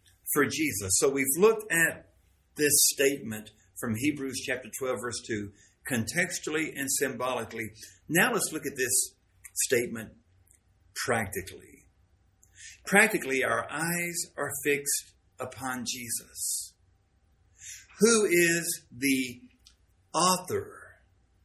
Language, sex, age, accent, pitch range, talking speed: English, male, 50-69, American, 95-145 Hz, 100 wpm